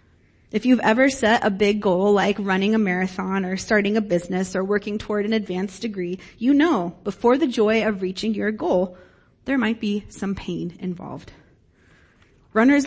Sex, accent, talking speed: female, American, 175 wpm